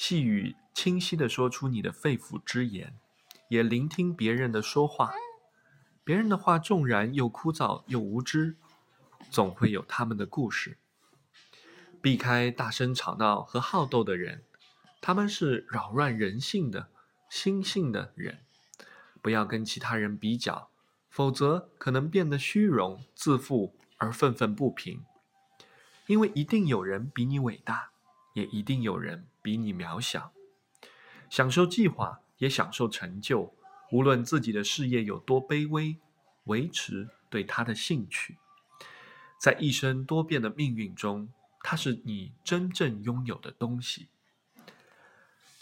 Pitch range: 120-170 Hz